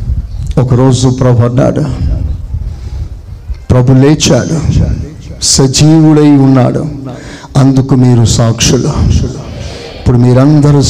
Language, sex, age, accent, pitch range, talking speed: Telugu, male, 50-69, native, 125-155 Hz, 65 wpm